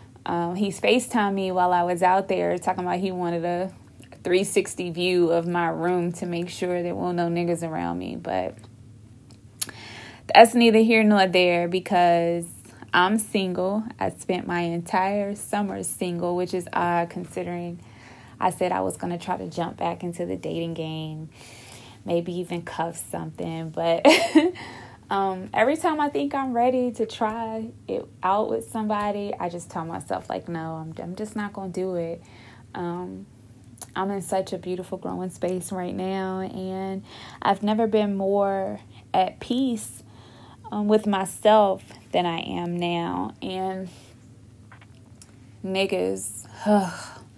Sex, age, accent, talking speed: female, 20-39, American, 150 wpm